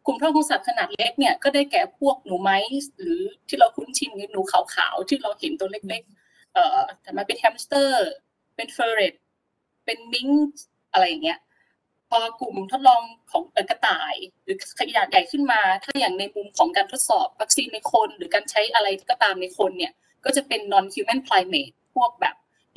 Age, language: 20-39, Thai